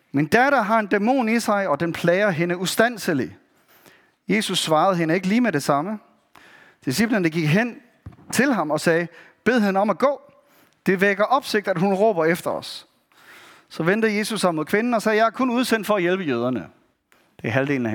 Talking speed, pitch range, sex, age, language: 200 wpm, 170-235 Hz, male, 30-49, Danish